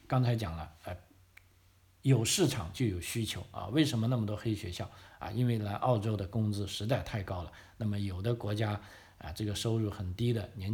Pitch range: 100-120 Hz